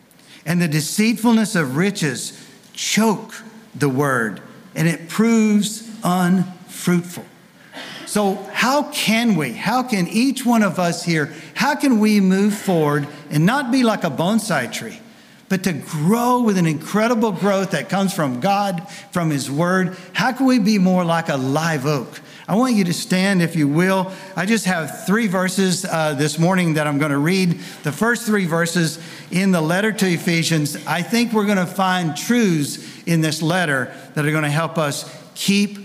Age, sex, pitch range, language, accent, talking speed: 50-69, male, 155-215 Hz, English, American, 170 wpm